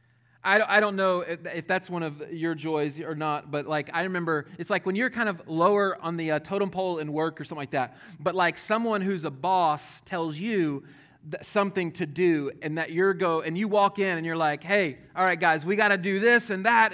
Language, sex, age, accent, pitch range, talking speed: English, male, 30-49, American, 150-215 Hz, 235 wpm